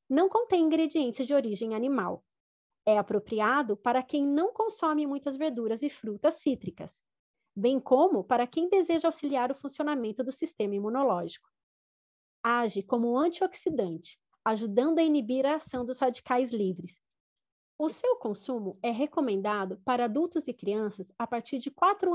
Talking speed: 140 wpm